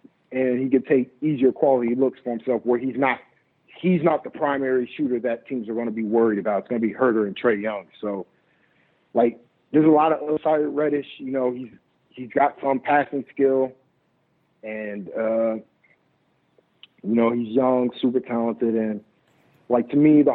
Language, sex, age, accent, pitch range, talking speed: English, male, 40-59, American, 115-135 Hz, 185 wpm